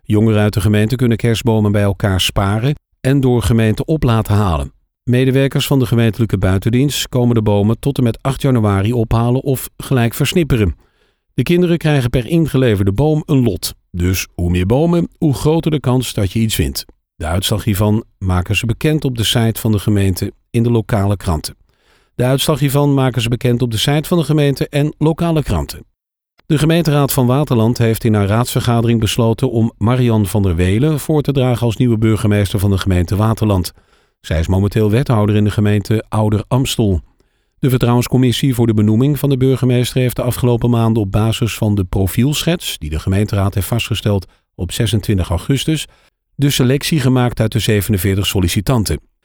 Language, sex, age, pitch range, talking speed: Dutch, male, 50-69, 105-135 Hz, 180 wpm